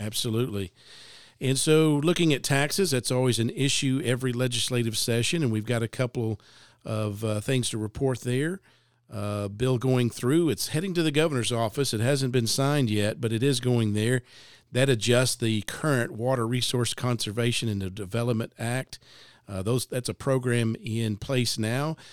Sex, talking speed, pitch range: male, 170 wpm, 110-130 Hz